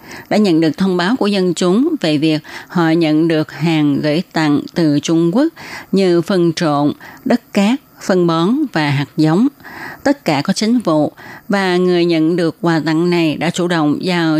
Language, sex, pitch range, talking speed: Vietnamese, female, 155-185 Hz, 190 wpm